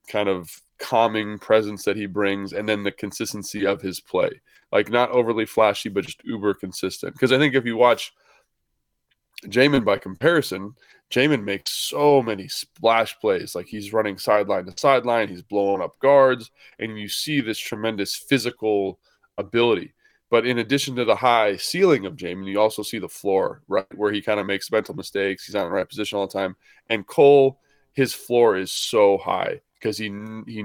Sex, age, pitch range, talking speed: male, 20-39, 105-120 Hz, 185 wpm